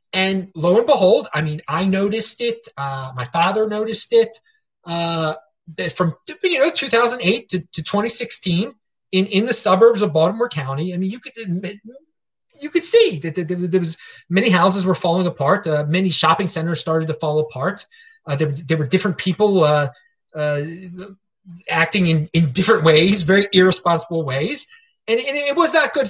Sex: male